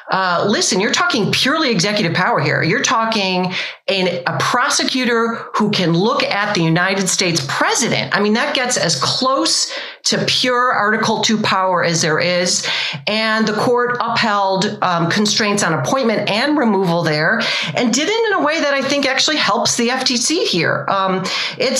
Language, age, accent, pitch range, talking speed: English, 40-59, American, 190-240 Hz, 170 wpm